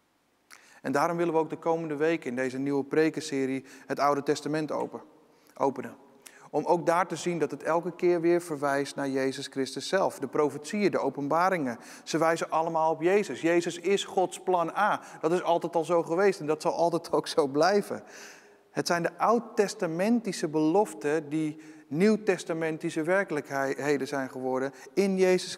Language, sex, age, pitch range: Dutch, male, 40-59, 150-185 Hz